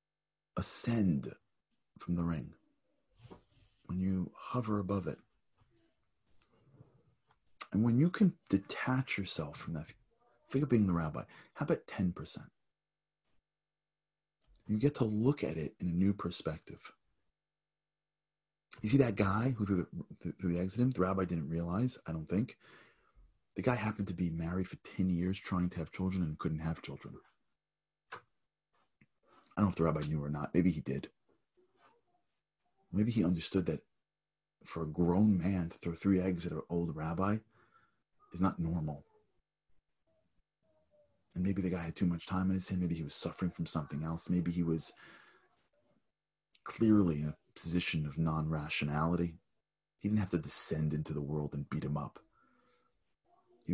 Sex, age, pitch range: male, 40-59, 80-110 Hz